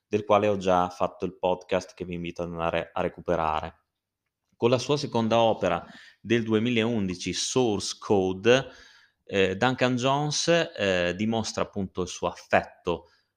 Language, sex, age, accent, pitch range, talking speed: Italian, male, 30-49, native, 90-115 Hz, 145 wpm